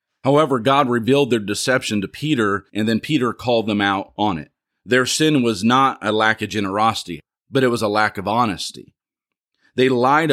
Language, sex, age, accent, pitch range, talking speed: English, male, 40-59, American, 100-130 Hz, 185 wpm